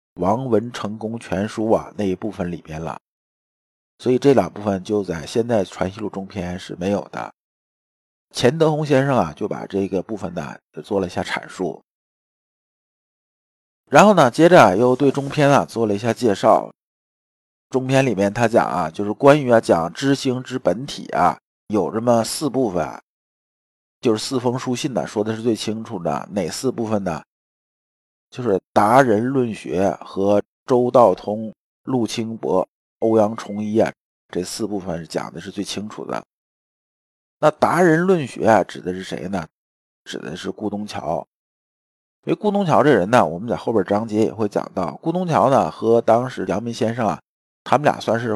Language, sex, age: Chinese, male, 50-69